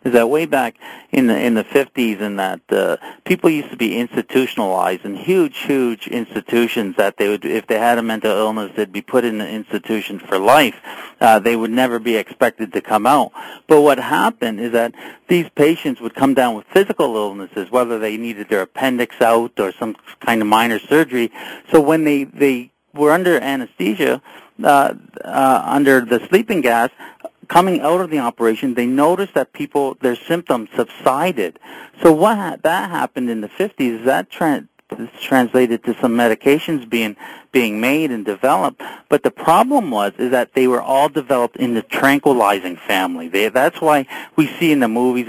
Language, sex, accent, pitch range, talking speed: English, male, American, 115-150 Hz, 185 wpm